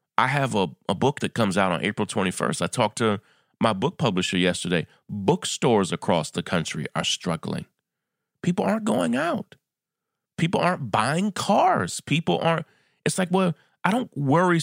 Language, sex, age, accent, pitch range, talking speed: English, male, 30-49, American, 115-180 Hz, 165 wpm